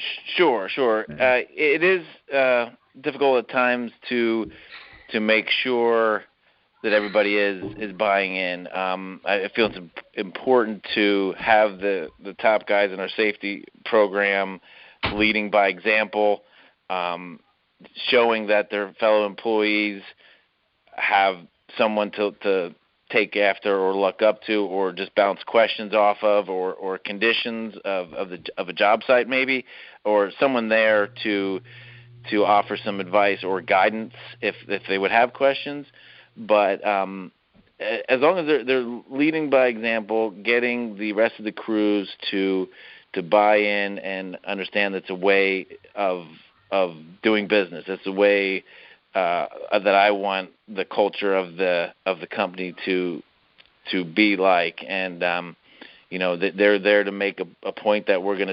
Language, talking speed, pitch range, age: English, 150 wpm, 95-110 Hz, 30-49